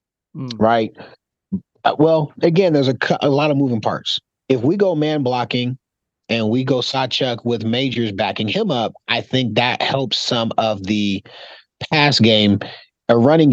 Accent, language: American, English